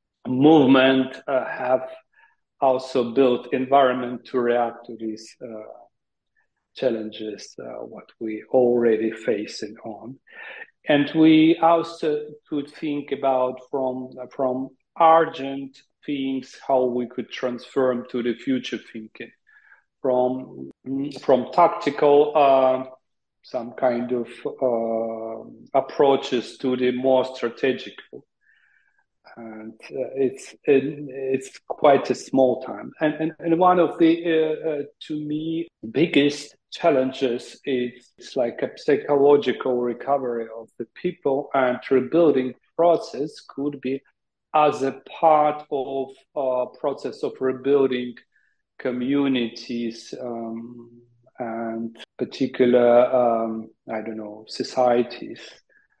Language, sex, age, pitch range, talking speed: English, male, 40-59, 120-145 Hz, 110 wpm